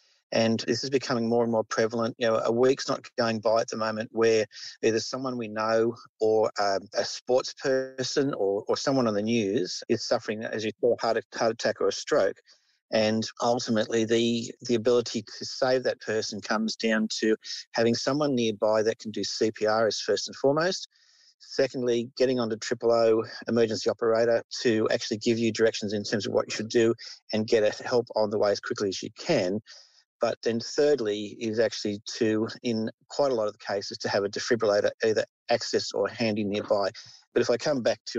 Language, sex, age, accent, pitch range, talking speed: English, male, 50-69, Australian, 110-125 Hz, 200 wpm